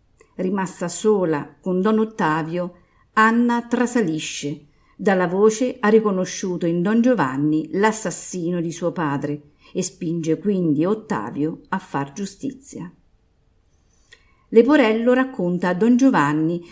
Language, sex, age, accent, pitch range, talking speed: Italian, female, 50-69, native, 165-225 Hz, 110 wpm